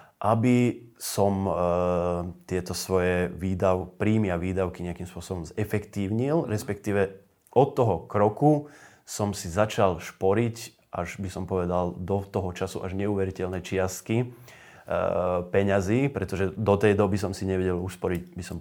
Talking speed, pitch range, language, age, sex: 135 wpm, 90-105 Hz, Slovak, 30-49, male